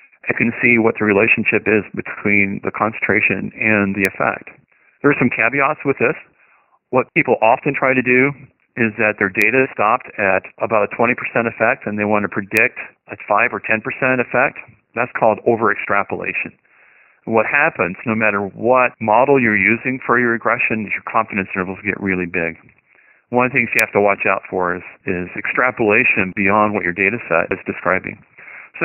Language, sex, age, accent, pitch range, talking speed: English, male, 40-59, American, 100-130 Hz, 180 wpm